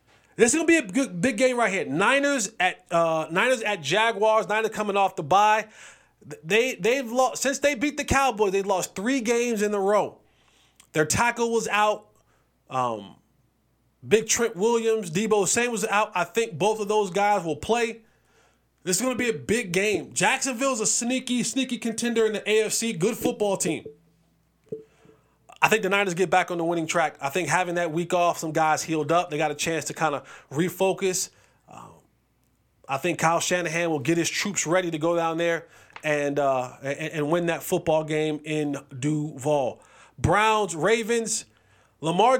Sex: male